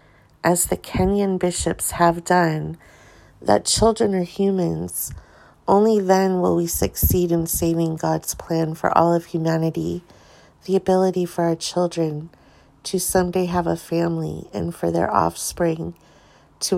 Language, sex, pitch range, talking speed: English, female, 150-175 Hz, 135 wpm